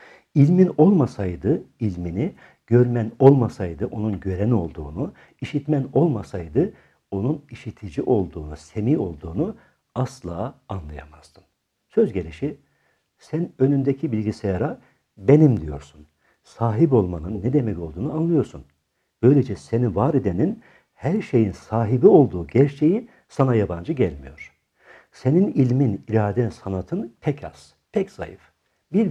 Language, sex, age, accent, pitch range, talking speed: Turkish, male, 60-79, native, 95-145 Hz, 105 wpm